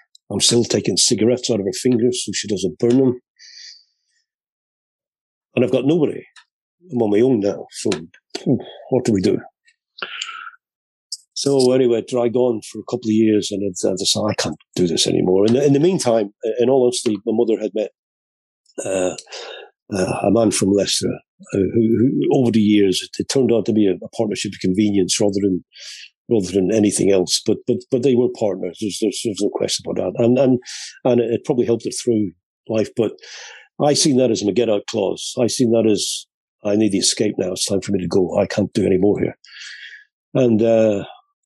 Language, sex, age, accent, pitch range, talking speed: English, male, 50-69, British, 105-130 Hz, 200 wpm